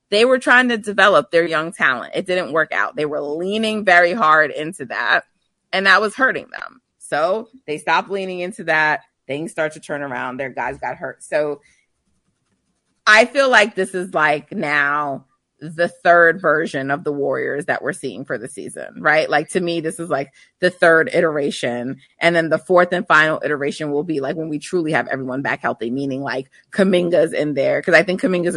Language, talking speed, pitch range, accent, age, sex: English, 200 wpm, 150-180 Hz, American, 30-49, female